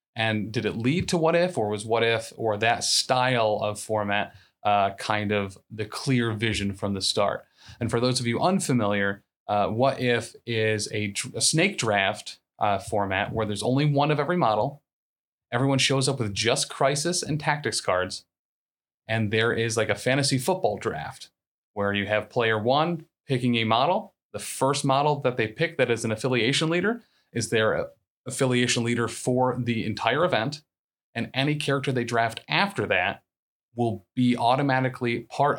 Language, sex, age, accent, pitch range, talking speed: English, male, 30-49, American, 110-135 Hz, 175 wpm